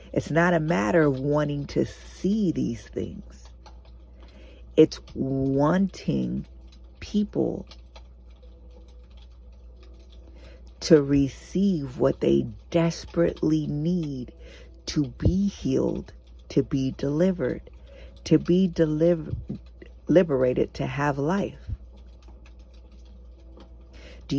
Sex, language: female, English